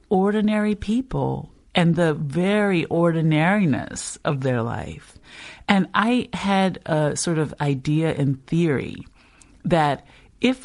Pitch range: 145-175 Hz